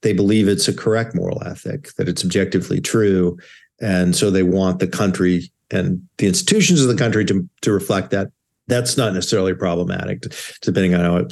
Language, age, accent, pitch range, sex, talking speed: English, 50-69, American, 90-115 Hz, male, 185 wpm